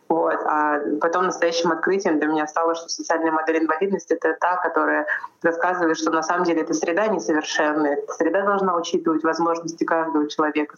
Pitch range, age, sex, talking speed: 150-170 Hz, 20-39, female, 165 wpm